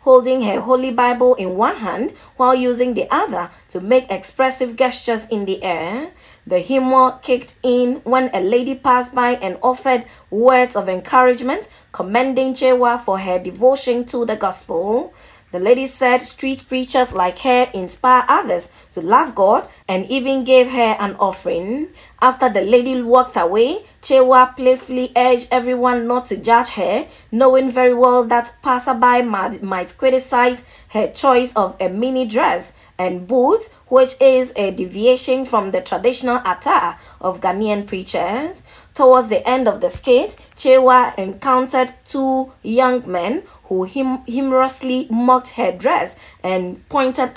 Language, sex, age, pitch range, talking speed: English, female, 20-39, 220-260 Hz, 145 wpm